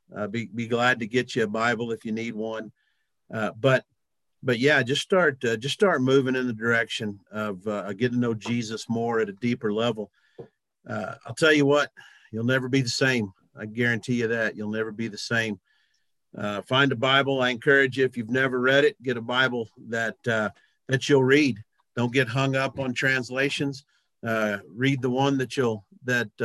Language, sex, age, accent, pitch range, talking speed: English, male, 50-69, American, 115-135 Hz, 200 wpm